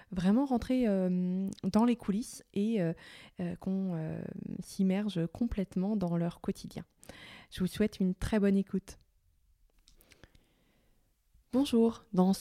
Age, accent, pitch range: 20-39, French, 170-205 Hz